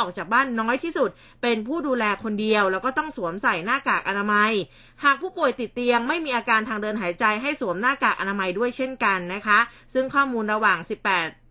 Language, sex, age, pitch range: Thai, female, 20-39, 205-255 Hz